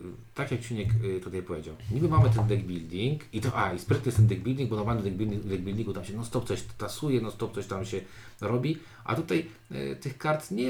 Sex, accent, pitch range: male, native, 95-115 Hz